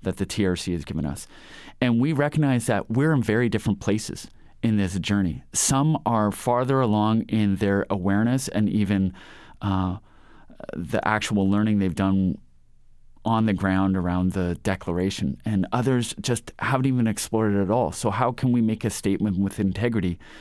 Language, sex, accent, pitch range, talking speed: English, male, American, 95-120 Hz, 170 wpm